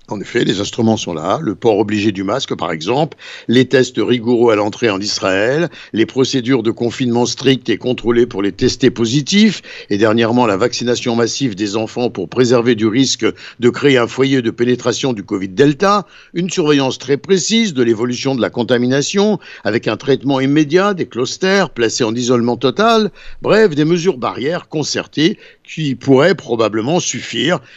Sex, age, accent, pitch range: male, 60-79, French, 120-160 Hz